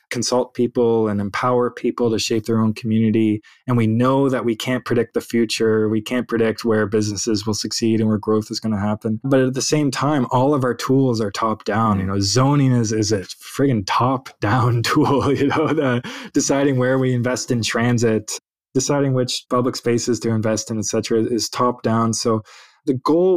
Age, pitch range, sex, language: 20-39, 115-140 Hz, male, Polish